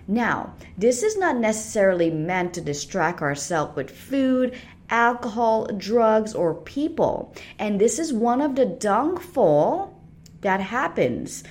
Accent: American